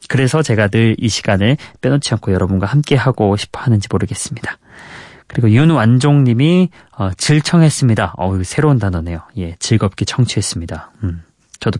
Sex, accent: male, native